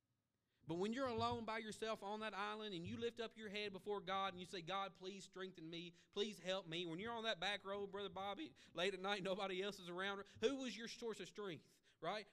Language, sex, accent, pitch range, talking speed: English, male, American, 155-225 Hz, 240 wpm